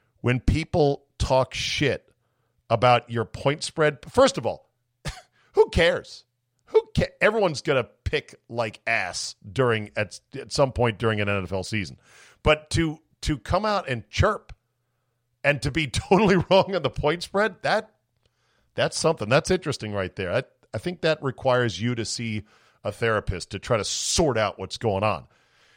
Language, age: English, 40-59